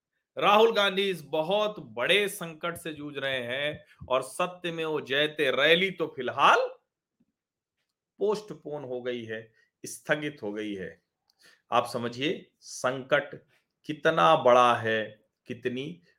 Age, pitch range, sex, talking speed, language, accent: 40-59, 155-200 Hz, male, 120 wpm, Hindi, native